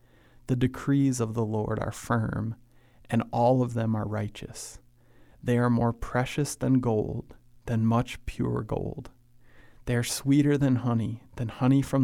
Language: English